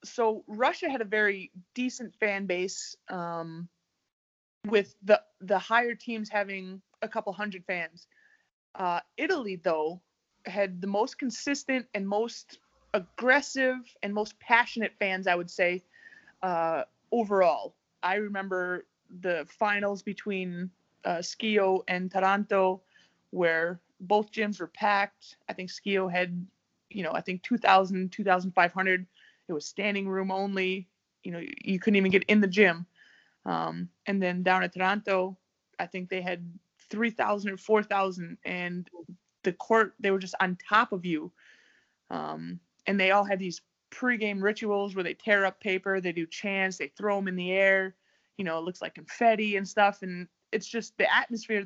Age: 20-39